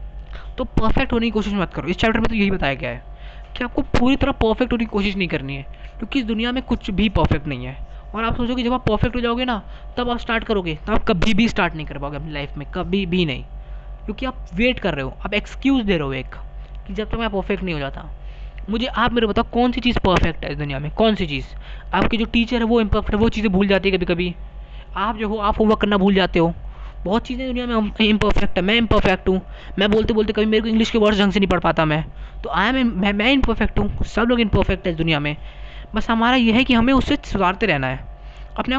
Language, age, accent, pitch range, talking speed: Hindi, 20-39, native, 180-235 Hz, 265 wpm